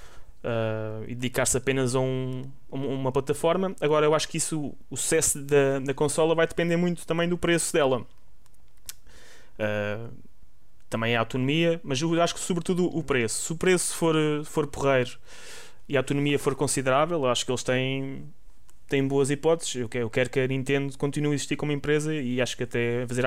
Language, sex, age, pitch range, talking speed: Portuguese, male, 20-39, 125-145 Hz, 190 wpm